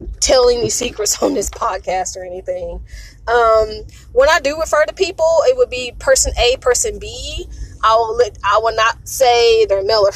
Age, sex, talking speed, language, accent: 20-39, female, 190 wpm, English, American